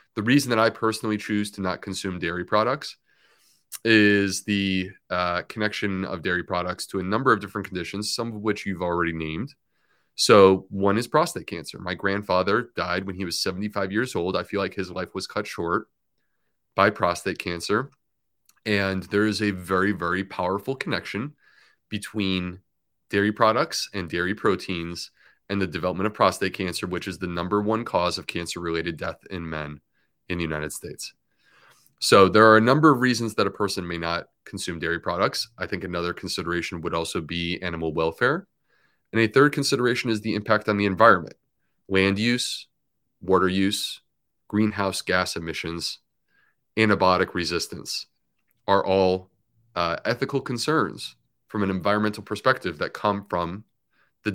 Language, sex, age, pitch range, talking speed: English, male, 30-49, 90-110 Hz, 160 wpm